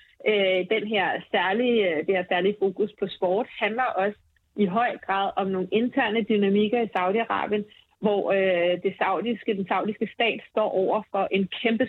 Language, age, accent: Danish, 30-49, native